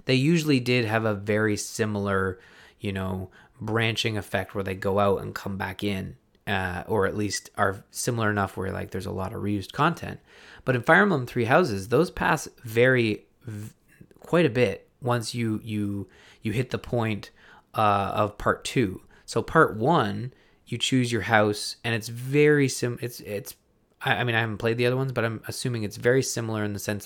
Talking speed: 195 wpm